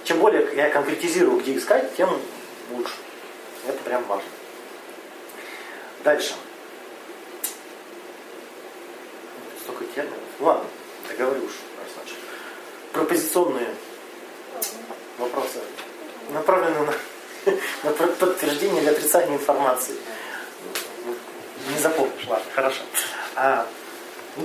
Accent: native